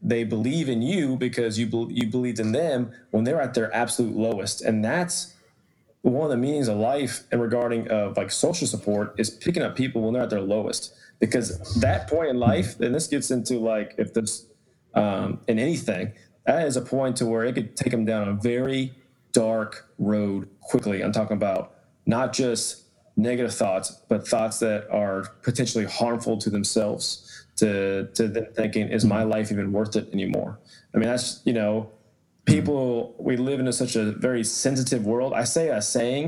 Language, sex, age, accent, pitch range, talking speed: English, male, 20-39, American, 110-125 Hz, 195 wpm